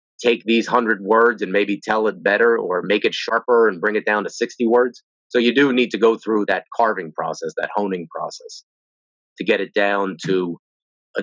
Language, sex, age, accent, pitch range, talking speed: English, male, 30-49, American, 95-135 Hz, 210 wpm